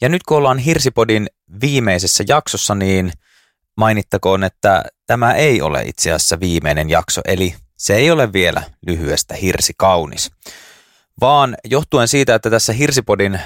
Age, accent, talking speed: 30-49, native, 135 wpm